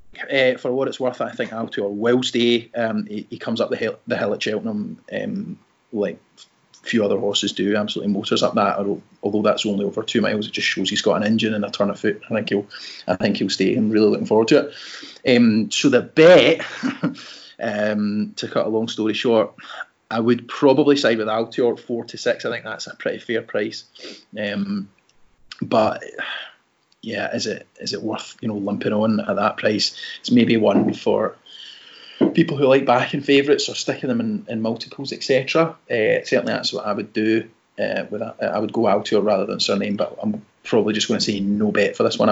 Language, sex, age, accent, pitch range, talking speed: English, male, 30-49, British, 105-140 Hz, 210 wpm